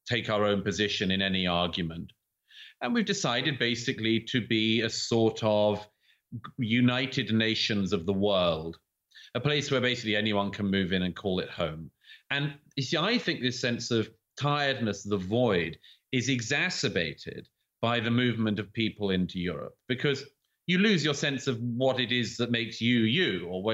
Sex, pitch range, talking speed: male, 105-145 Hz, 170 wpm